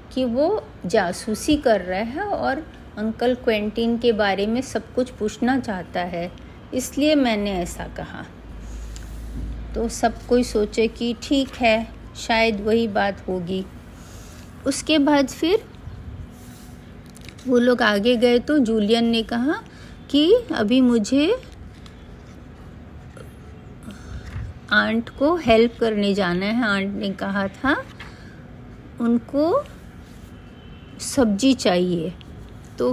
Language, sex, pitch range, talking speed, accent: Hindi, female, 210-265 Hz, 110 wpm, native